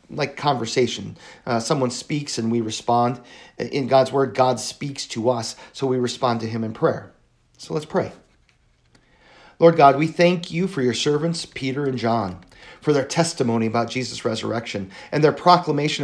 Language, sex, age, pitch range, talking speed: English, male, 40-59, 115-150 Hz, 170 wpm